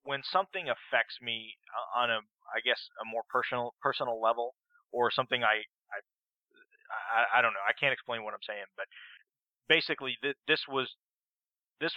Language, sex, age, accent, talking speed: English, male, 20-39, American, 160 wpm